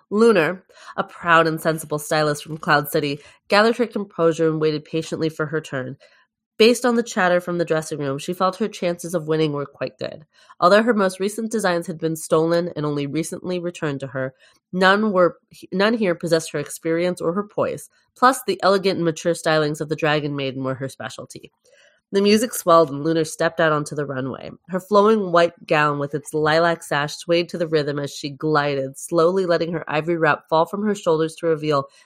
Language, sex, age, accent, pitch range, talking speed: English, female, 20-39, American, 150-180 Hz, 200 wpm